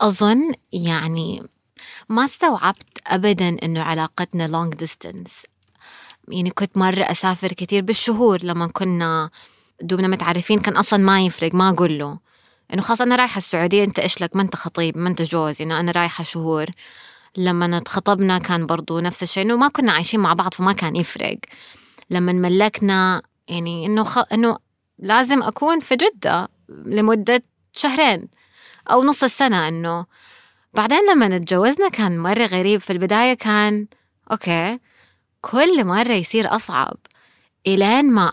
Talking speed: 145 wpm